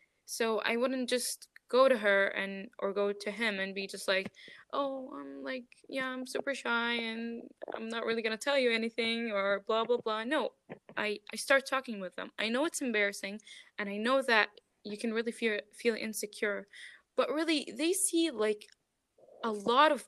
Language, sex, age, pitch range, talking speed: English, female, 10-29, 210-275 Hz, 195 wpm